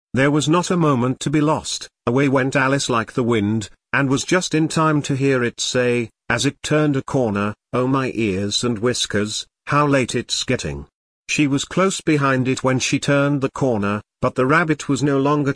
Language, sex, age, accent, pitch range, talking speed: English, male, 50-69, British, 115-145 Hz, 205 wpm